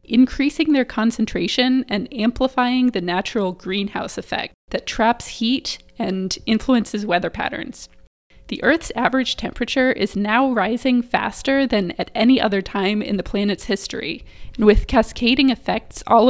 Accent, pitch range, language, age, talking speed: American, 200-255 Hz, English, 20-39, 140 wpm